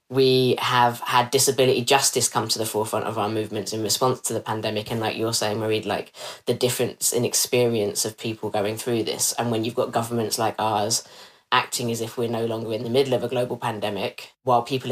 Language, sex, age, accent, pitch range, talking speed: English, female, 20-39, British, 115-130 Hz, 215 wpm